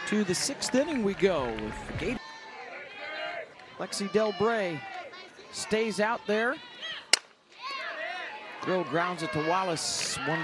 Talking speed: 110 wpm